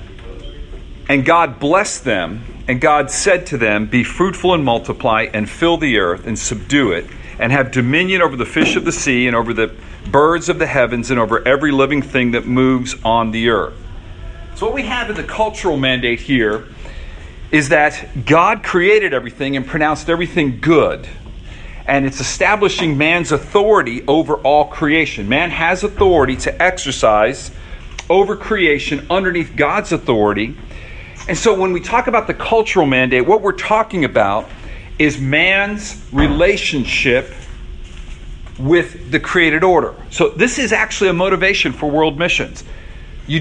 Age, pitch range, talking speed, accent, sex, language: 40-59, 120-180 Hz, 155 wpm, American, male, English